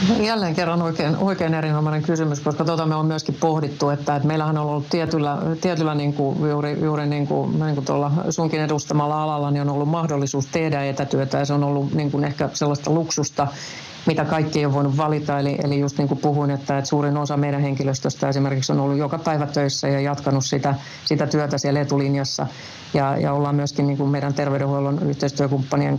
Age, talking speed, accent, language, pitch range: 50-69, 190 wpm, native, Finnish, 140-155 Hz